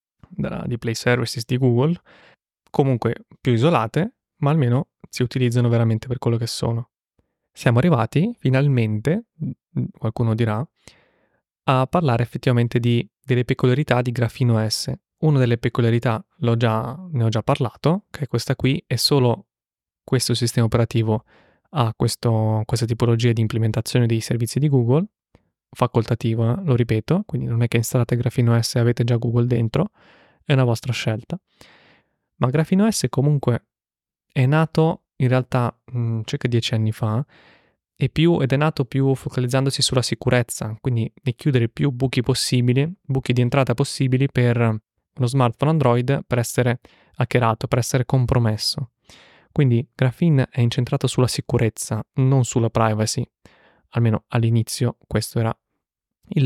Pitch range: 115-140 Hz